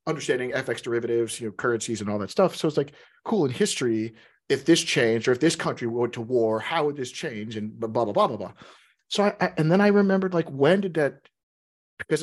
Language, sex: English, male